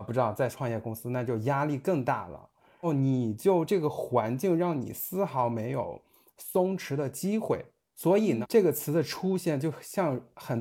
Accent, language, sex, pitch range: native, Chinese, male, 125-185 Hz